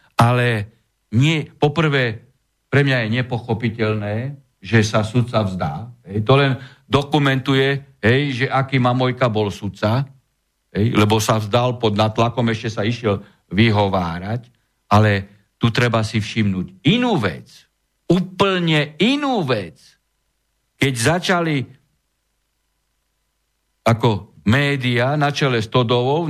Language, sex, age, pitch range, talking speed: Slovak, male, 50-69, 110-140 Hz, 110 wpm